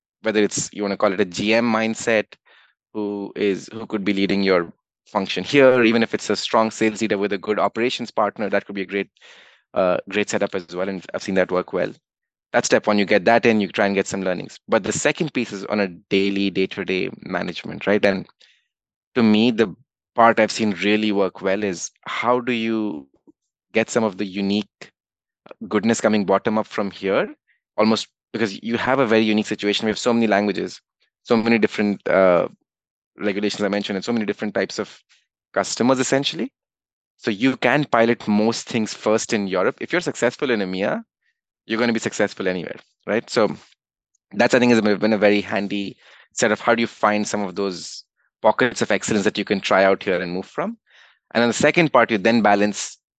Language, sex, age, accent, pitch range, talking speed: English, male, 20-39, Indian, 100-115 Hz, 205 wpm